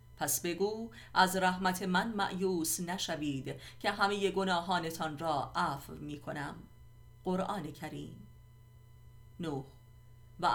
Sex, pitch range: female, 145-190 Hz